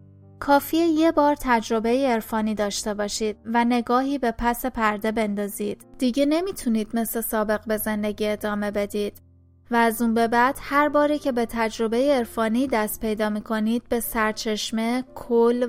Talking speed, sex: 145 wpm, female